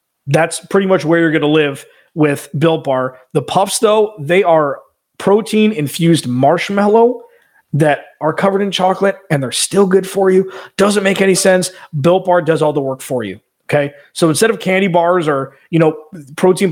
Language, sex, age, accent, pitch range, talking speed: English, male, 30-49, American, 145-185 Hz, 185 wpm